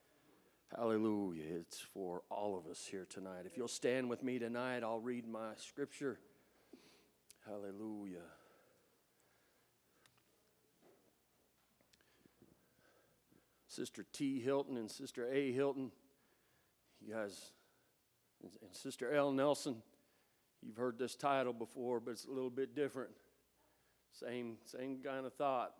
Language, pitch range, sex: English, 115-145 Hz, male